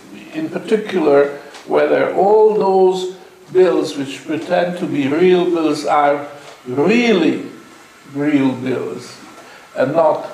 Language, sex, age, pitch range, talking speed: English, male, 60-79, 145-225 Hz, 105 wpm